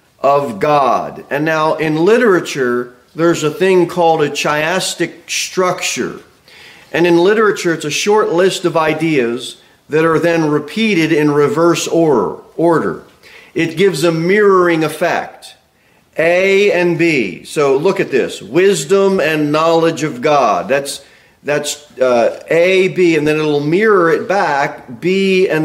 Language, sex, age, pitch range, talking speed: English, male, 40-59, 145-175 Hz, 140 wpm